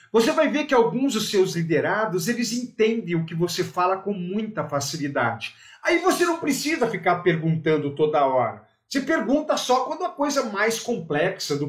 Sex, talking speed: male, 180 wpm